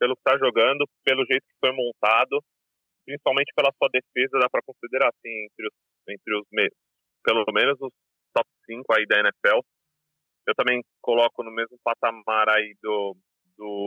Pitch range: 125-150 Hz